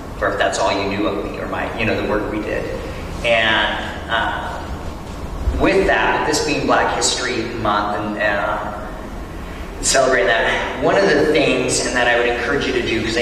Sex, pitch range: male, 100-130 Hz